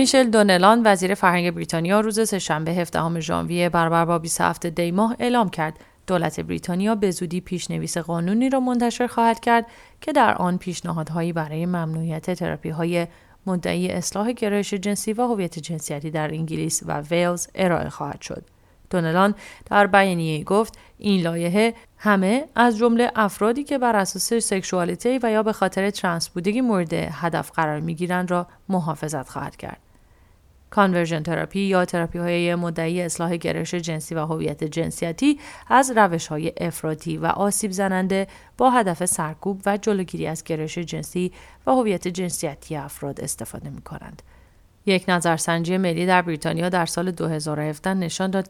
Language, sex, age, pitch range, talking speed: English, female, 30-49, 165-205 Hz, 150 wpm